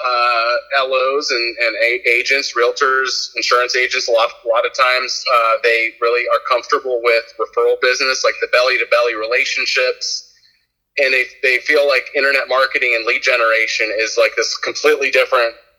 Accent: American